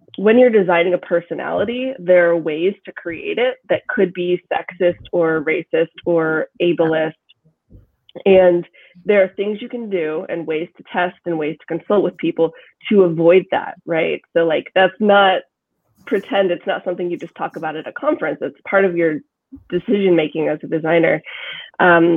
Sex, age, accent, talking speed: female, 20-39, American, 175 wpm